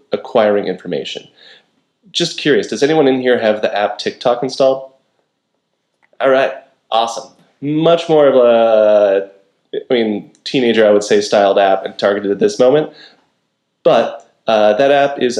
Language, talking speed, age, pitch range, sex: English, 150 wpm, 20-39, 105-135 Hz, male